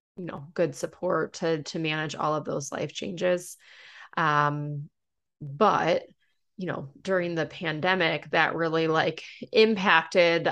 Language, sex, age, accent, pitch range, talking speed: English, female, 20-39, American, 160-185 Hz, 130 wpm